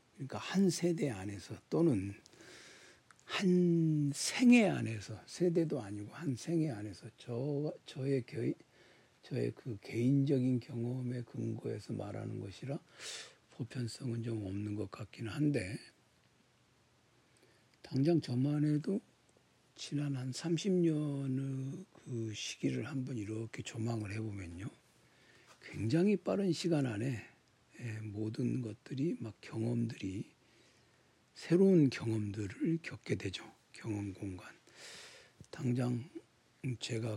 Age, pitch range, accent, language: 60-79, 110-145 Hz, native, Korean